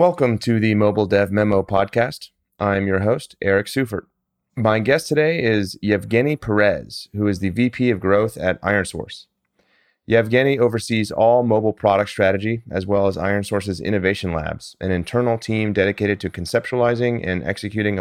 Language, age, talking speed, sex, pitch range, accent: English, 30-49, 155 wpm, male, 100-120 Hz, American